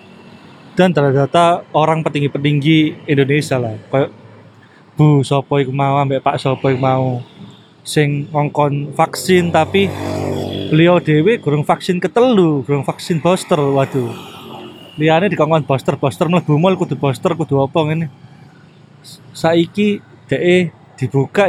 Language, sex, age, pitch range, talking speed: Indonesian, male, 20-39, 140-175 Hz, 120 wpm